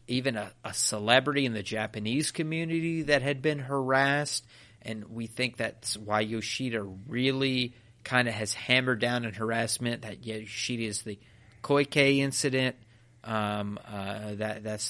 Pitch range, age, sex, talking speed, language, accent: 105-130 Hz, 30-49, male, 145 wpm, English, American